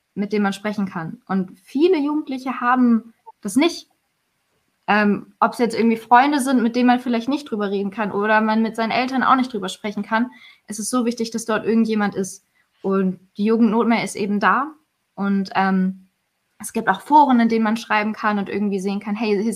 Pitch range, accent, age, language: 195-230 Hz, German, 20-39, German